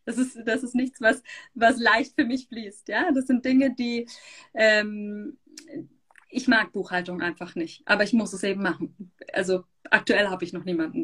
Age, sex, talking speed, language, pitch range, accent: 30-49, female, 175 wpm, English, 205-280 Hz, German